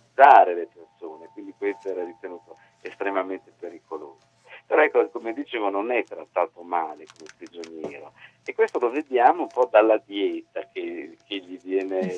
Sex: male